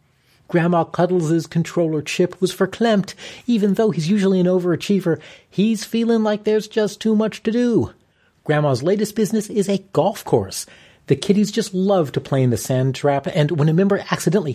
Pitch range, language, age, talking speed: 130-195 Hz, English, 40-59, 175 wpm